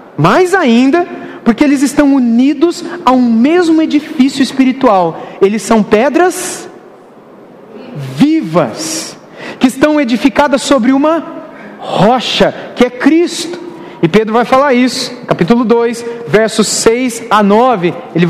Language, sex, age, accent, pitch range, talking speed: Portuguese, male, 40-59, Brazilian, 205-265 Hz, 120 wpm